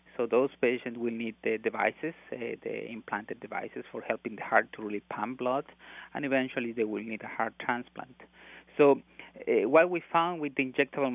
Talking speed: 190 wpm